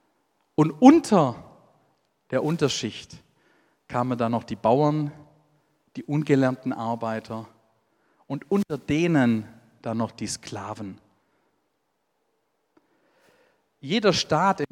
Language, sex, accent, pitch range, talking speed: German, male, German, 120-200 Hz, 90 wpm